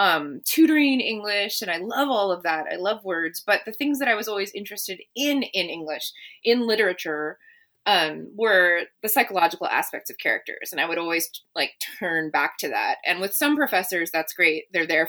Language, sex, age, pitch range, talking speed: English, female, 20-39, 160-230 Hz, 195 wpm